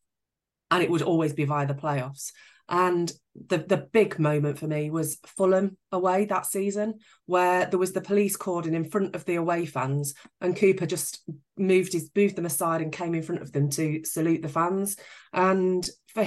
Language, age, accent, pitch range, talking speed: English, 30-49, British, 155-190 Hz, 190 wpm